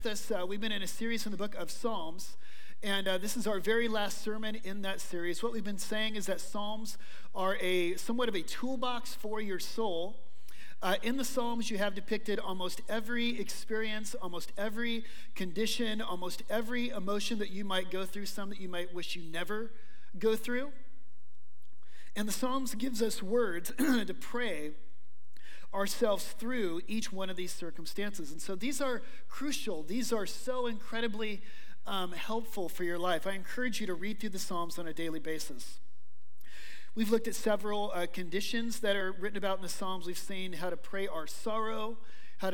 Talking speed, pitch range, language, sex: 185 wpm, 180-225 Hz, English, male